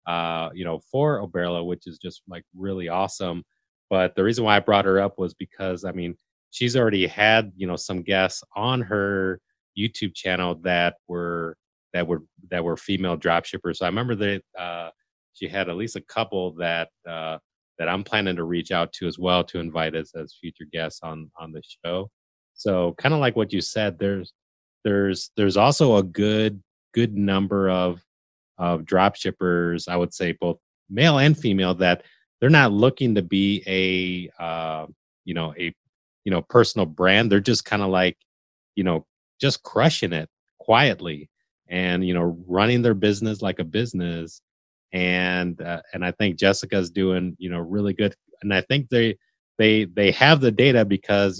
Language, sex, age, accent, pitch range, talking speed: English, male, 30-49, American, 85-100 Hz, 180 wpm